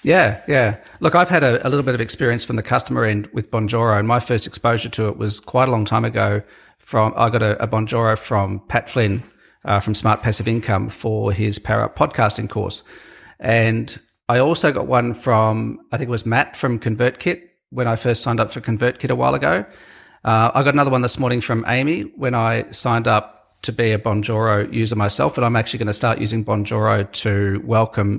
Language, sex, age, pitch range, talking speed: English, male, 40-59, 110-125 Hz, 215 wpm